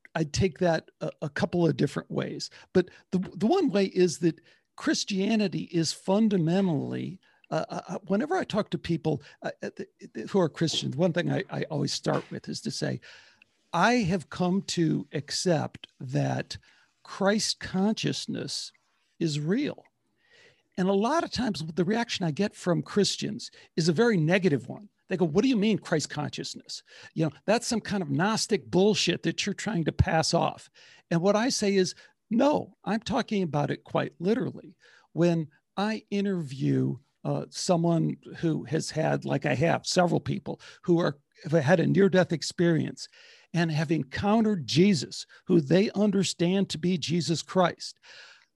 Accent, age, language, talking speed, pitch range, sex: American, 60-79, English, 165 wpm, 165-205 Hz, male